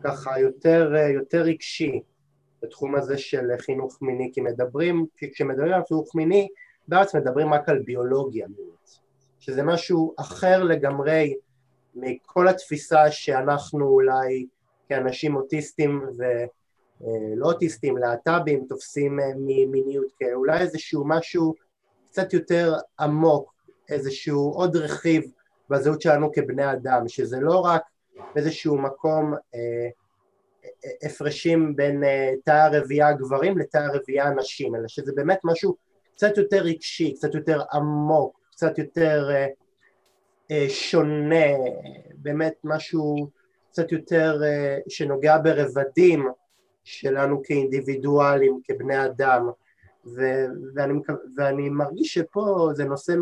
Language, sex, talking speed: Hebrew, male, 110 wpm